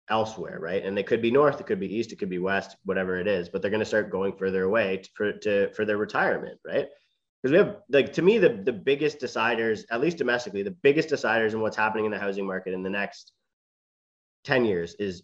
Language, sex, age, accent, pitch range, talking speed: English, male, 30-49, American, 100-120 Hz, 245 wpm